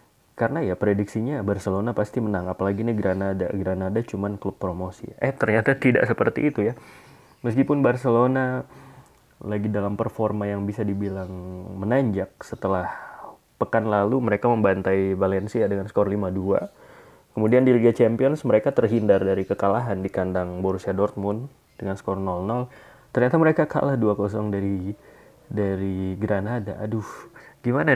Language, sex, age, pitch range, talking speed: Indonesian, male, 20-39, 100-125 Hz, 130 wpm